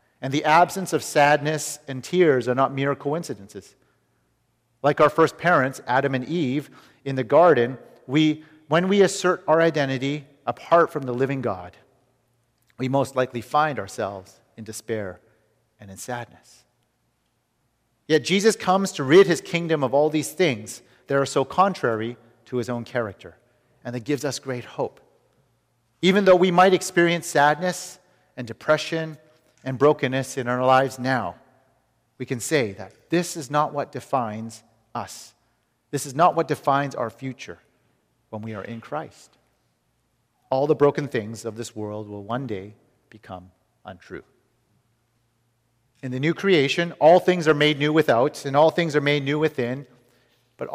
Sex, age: male, 40-59